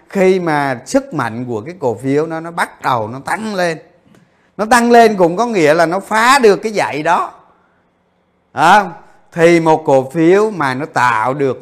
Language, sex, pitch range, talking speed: Vietnamese, male, 145-195 Hz, 190 wpm